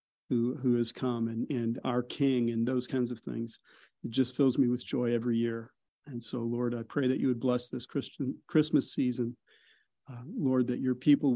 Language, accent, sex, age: English, American, male, 40-59